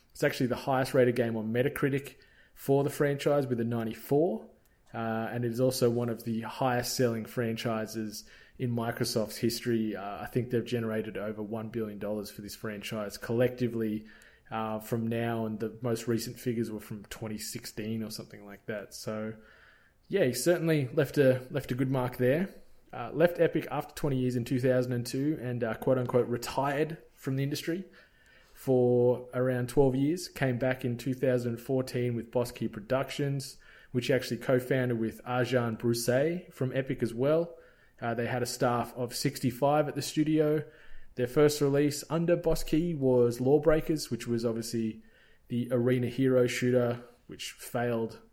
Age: 20-39